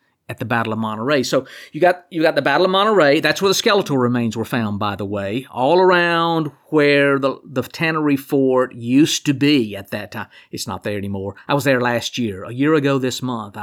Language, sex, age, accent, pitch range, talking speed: English, male, 50-69, American, 115-150 Hz, 225 wpm